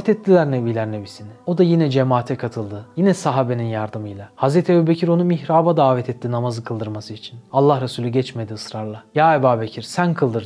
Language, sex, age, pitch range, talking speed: Turkish, male, 30-49, 115-145 Hz, 165 wpm